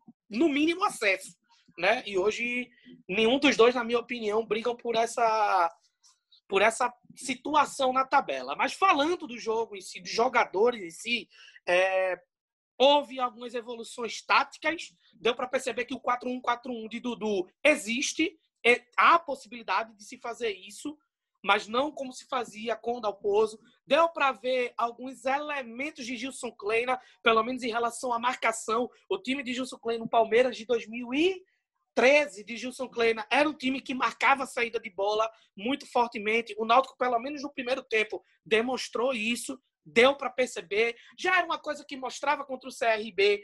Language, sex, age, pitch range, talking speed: Portuguese, male, 20-39, 225-275 Hz, 165 wpm